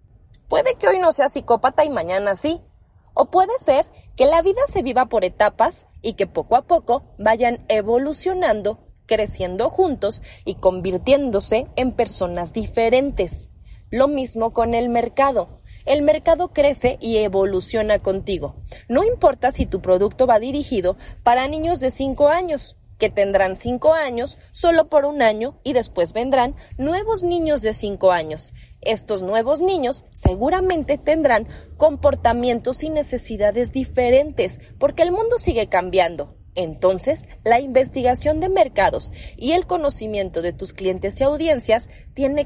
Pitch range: 215-300 Hz